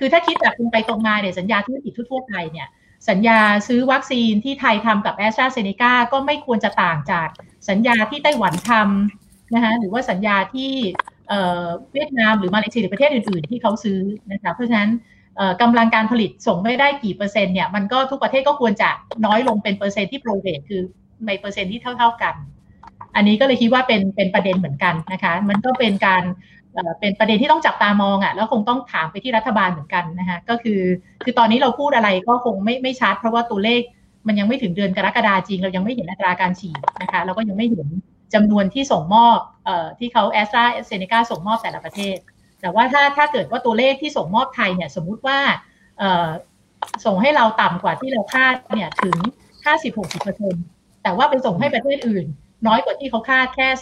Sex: female